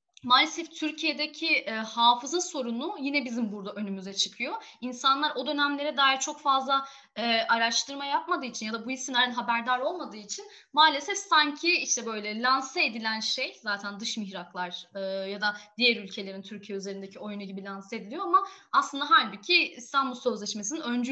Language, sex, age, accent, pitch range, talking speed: Turkish, female, 10-29, native, 210-300 Hz, 145 wpm